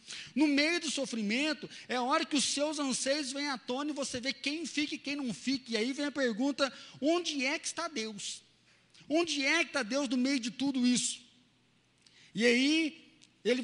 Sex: male